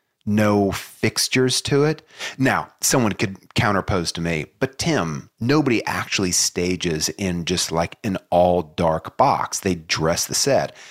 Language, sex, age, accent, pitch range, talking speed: English, male, 30-49, American, 95-140 Hz, 140 wpm